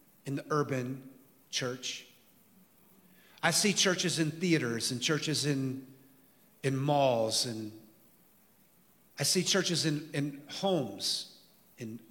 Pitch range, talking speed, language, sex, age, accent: 130-165 Hz, 110 wpm, English, male, 40-59, American